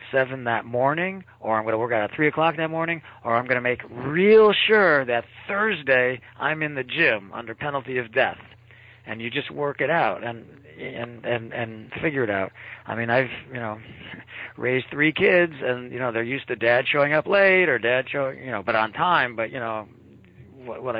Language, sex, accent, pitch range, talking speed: English, male, American, 110-130 Hz, 215 wpm